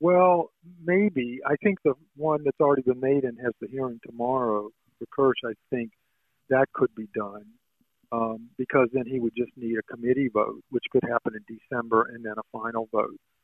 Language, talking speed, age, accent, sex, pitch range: English, 190 wpm, 50-69, American, male, 115-135 Hz